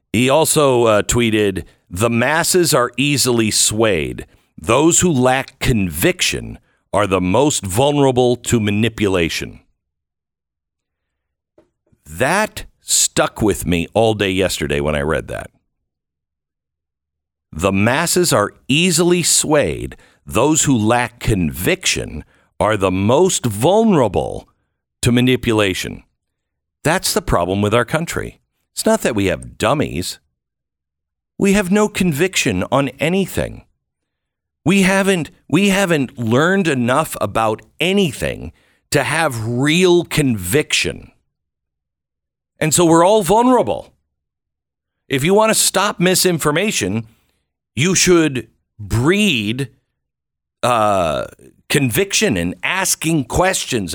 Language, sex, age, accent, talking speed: English, male, 60-79, American, 105 wpm